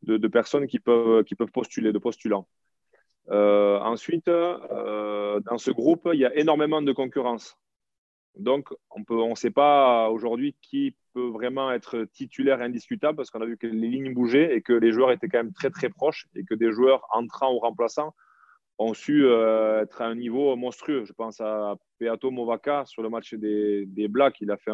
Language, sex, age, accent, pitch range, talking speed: French, male, 20-39, French, 105-125 Hz, 200 wpm